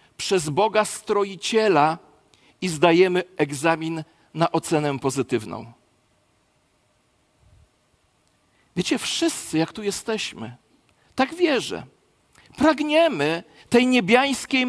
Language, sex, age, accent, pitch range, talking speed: Polish, male, 40-59, native, 160-265 Hz, 80 wpm